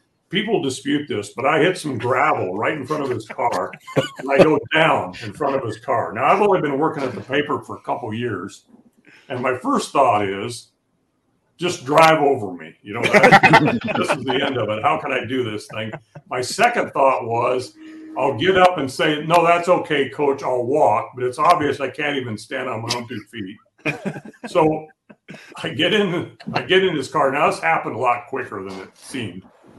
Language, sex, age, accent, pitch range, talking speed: English, male, 50-69, American, 125-170 Hz, 205 wpm